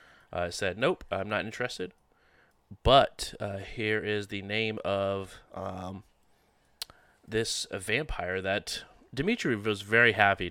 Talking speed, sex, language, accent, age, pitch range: 125 wpm, male, English, American, 20-39, 90-115 Hz